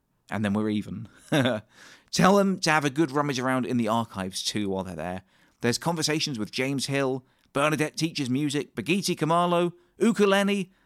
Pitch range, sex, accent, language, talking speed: 110-155 Hz, male, British, English, 165 wpm